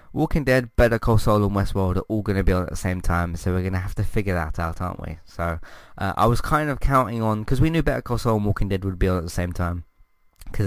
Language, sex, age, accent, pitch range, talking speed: English, male, 20-39, British, 90-115 Hz, 300 wpm